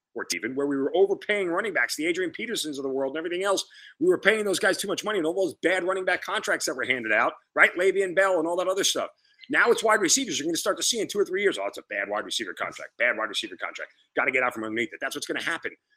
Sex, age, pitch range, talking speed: male, 30-49, 140-225 Hz, 305 wpm